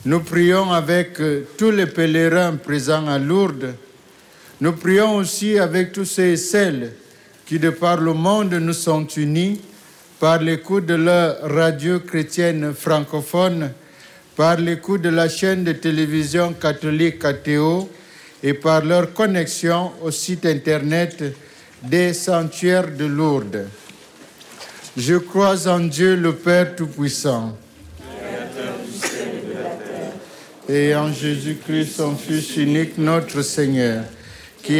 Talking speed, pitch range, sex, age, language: 115 wpm, 145-170 Hz, male, 60-79, French